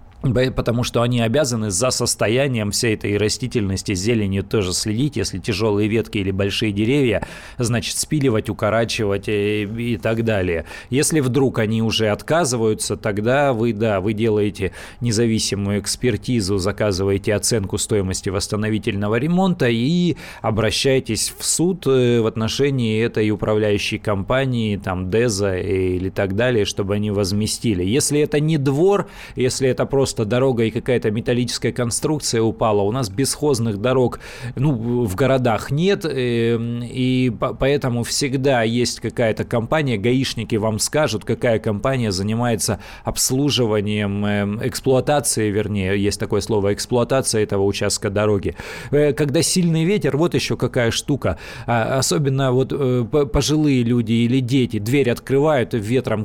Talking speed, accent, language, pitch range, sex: 125 wpm, native, Russian, 105-130 Hz, male